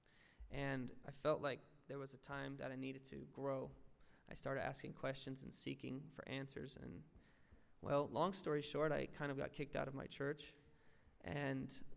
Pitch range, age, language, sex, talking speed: 135-155 Hz, 20-39, English, male, 180 wpm